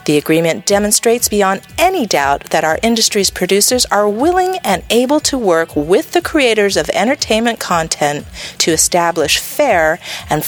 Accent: American